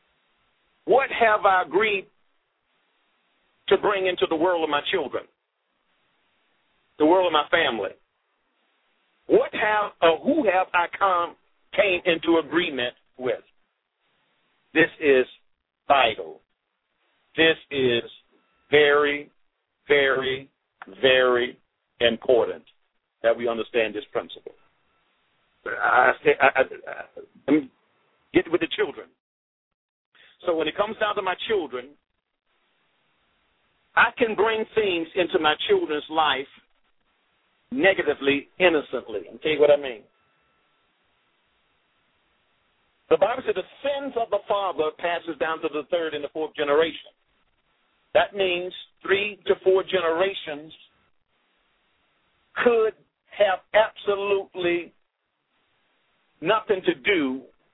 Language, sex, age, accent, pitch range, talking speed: English, male, 50-69, American, 155-230 Hz, 110 wpm